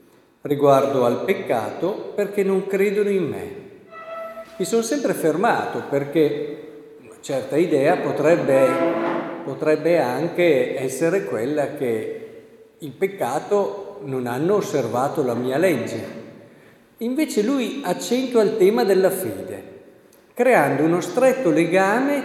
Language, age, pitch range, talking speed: Italian, 50-69, 145-225 Hz, 110 wpm